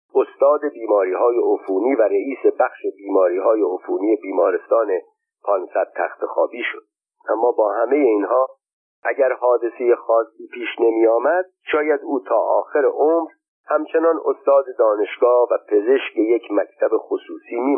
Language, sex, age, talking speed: Persian, male, 50-69, 120 wpm